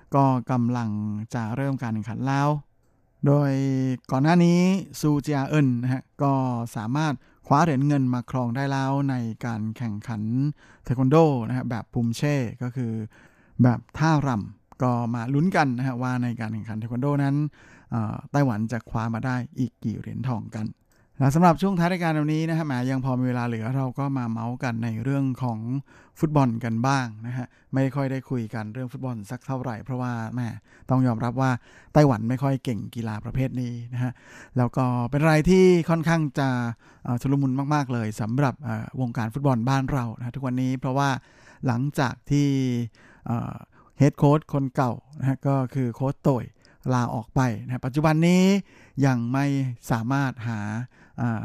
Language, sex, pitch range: Thai, male, 120-140 Hz